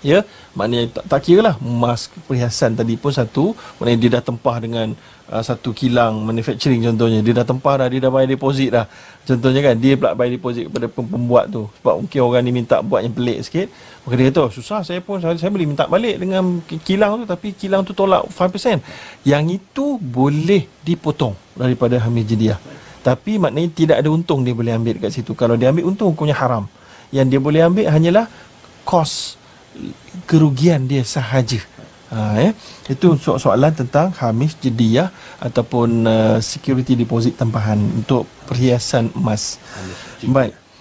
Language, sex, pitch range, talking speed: Malayalam, male, 120-170 Hz, 170 wpm